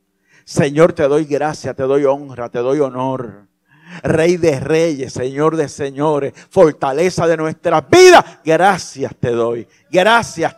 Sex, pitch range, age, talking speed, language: male, 145-240 Hz, 50-69, 135 wpm, Spanish